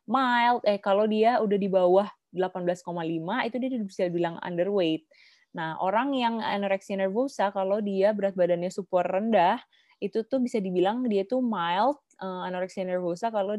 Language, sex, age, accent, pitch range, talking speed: Indonesian, female, 20-39, native, 180-220 Hz, 155 wpm